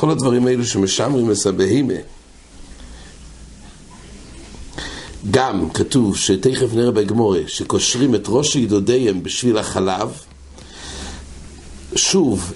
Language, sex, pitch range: English, male, 100-135 Hz